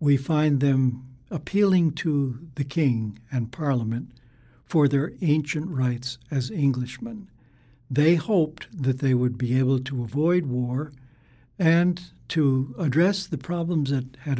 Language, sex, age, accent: English, male, 60-79, American